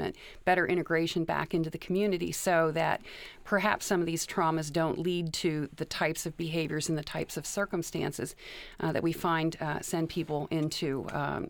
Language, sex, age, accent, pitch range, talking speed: English, female, 40-59, American, 155-180 Hz, 175 wpm